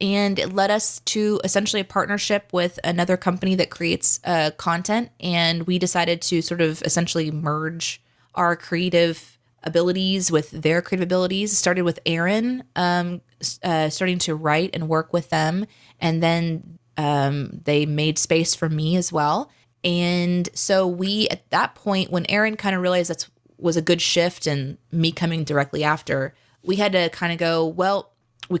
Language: English